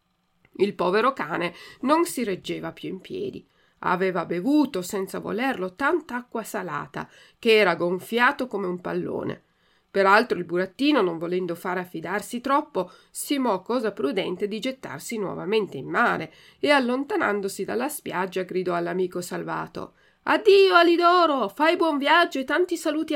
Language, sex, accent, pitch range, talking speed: Italian, female, native, 185-280 Hz, 140 wpm